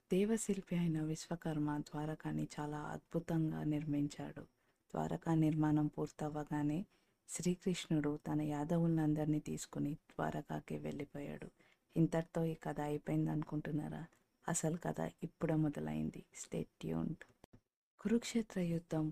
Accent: native